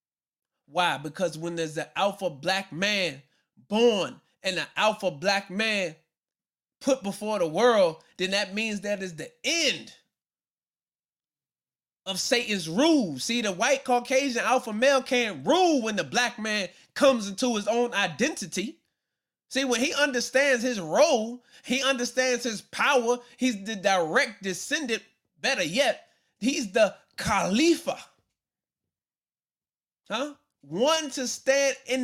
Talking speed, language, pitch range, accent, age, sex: 130 wpm, English, 205-260 Hz, American, 20-39, male